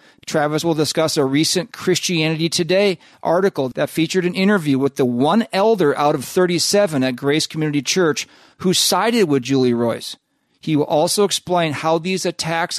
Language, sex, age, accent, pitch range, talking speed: English, male, 40-59, American, 130-170 Hz, 165 wpm